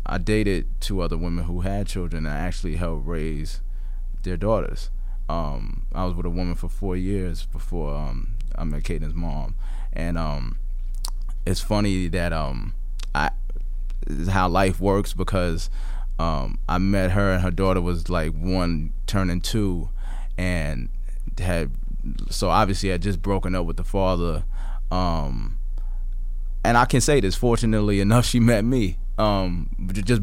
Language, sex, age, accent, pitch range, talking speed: English, male, 20-39, American, 85-105 Hz, 155 wpm